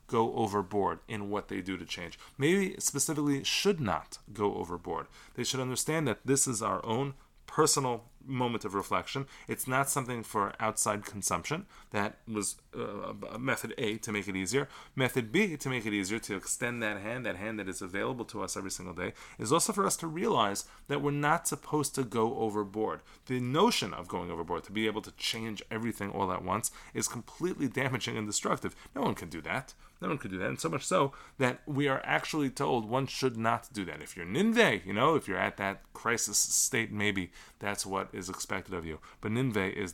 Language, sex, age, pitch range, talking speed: English, male, 30-49, 100-135 Hz, 205 wpm